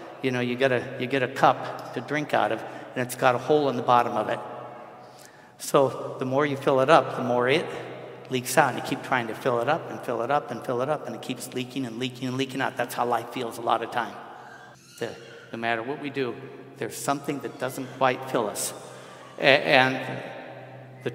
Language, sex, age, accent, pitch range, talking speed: English, male, 60-79, American, 120-145 Hz, 225 wpm